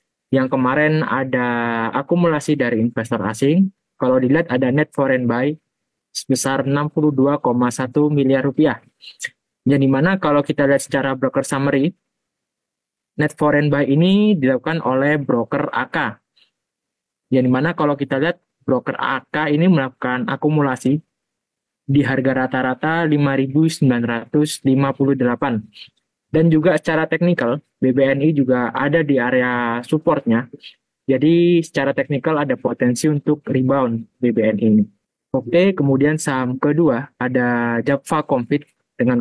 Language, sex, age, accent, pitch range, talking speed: Indonesian, male, 20-39, native, 130-150 Hz, 115 wpm